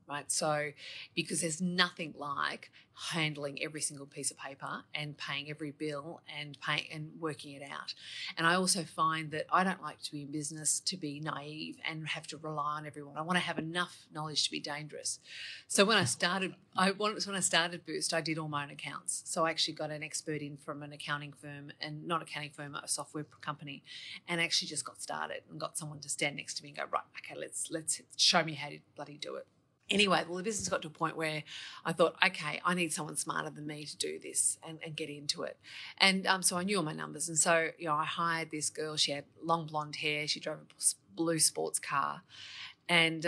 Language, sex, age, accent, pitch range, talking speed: English, female, 30-49, Australian, 150-170 Hz, 230 wpm